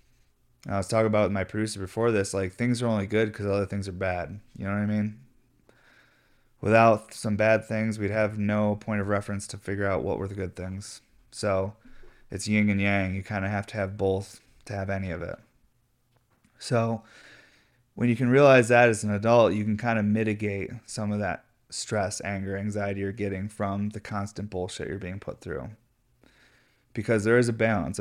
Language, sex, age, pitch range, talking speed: English, male, 20-39, 95-110 Hz, 200 wpm